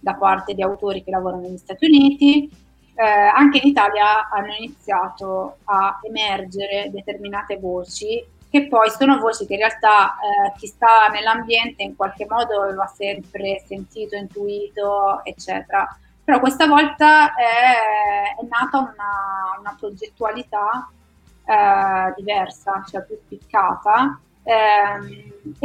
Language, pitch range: Italian, 195-260 Hz